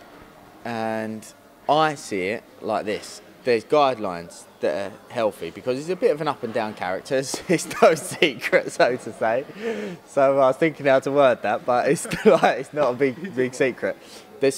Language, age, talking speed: English, 20-39, 185 wpm